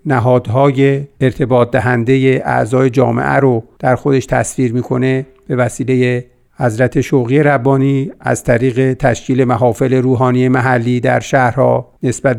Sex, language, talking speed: male, Persian, 115 wpm